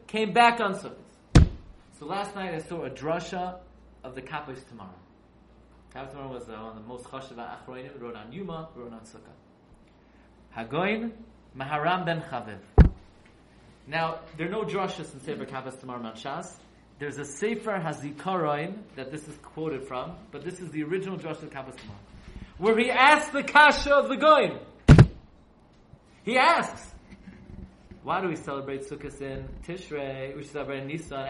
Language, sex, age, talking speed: English, male, 30-49, 160 wpm